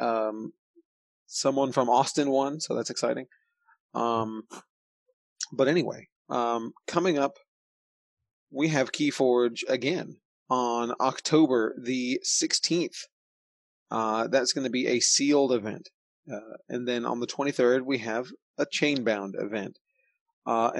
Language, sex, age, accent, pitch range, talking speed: English, male, 30-49, American, 125-160 Hz, 125 wpm